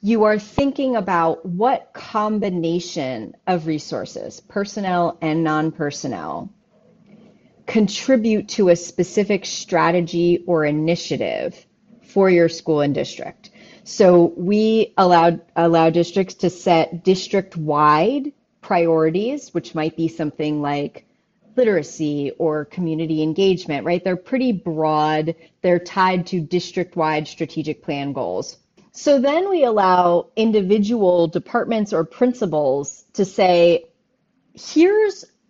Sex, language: female, English